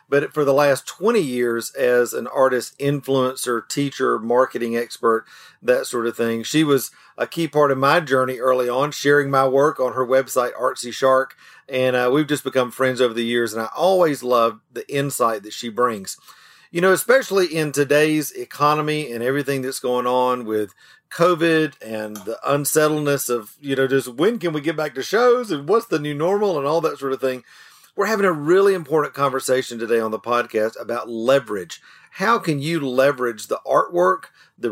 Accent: American